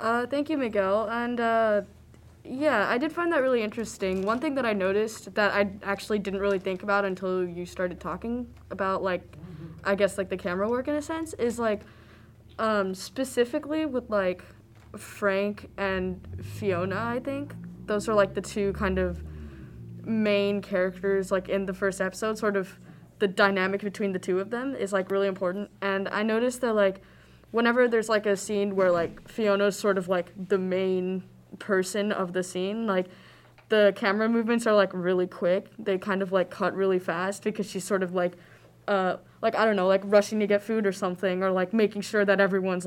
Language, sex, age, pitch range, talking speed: English, female, 10-29, 185-220 Hz, 195 wpm